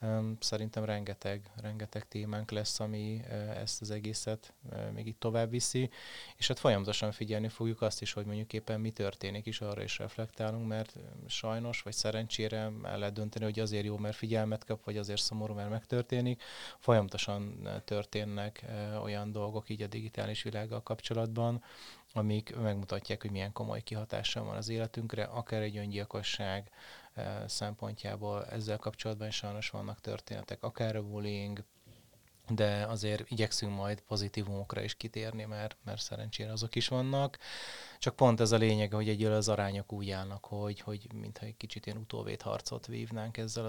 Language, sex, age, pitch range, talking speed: Hungarian, male, 20-39, 105-115 Hz, 150 wpm